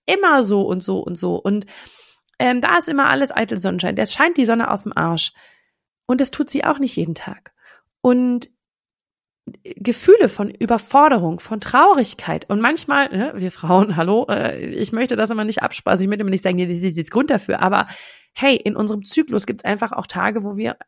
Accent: German